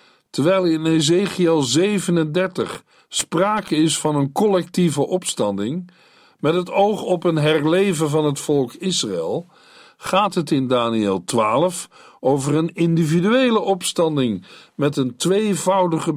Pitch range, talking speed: 125-180 Hz, 120 wpm